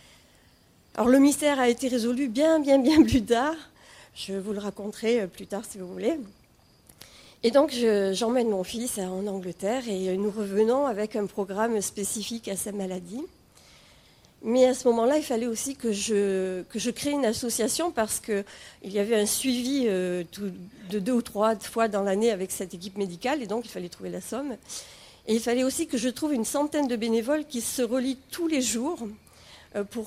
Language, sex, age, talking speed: French, female, 40-59, 185 wpm